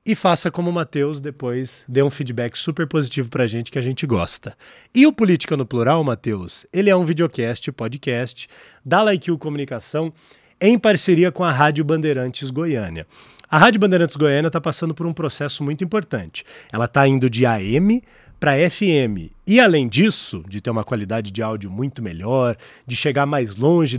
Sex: male